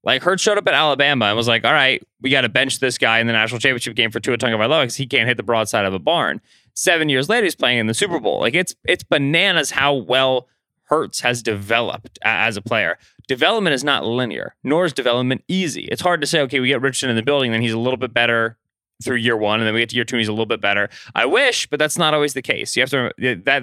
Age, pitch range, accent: 20-39, 115-140 Hz, American